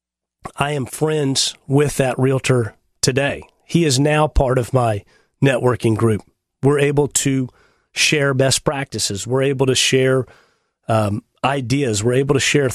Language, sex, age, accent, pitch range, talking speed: English, male, 40-59, American, 115-140 Hz, 145 wpm